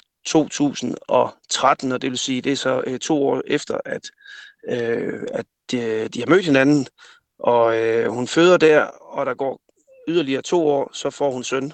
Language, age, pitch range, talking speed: Danish, 30-49, 125-170 Hz, 185 wpm